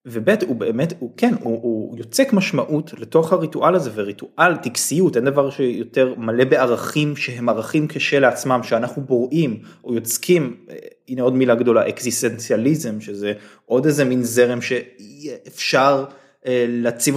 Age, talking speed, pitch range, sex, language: 20-39, 135 wpm, 120-160 Hz, male, Hebrew